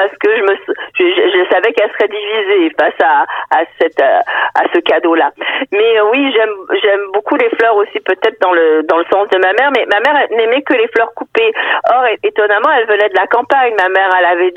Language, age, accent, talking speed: French, 40-59, French, 225 wpm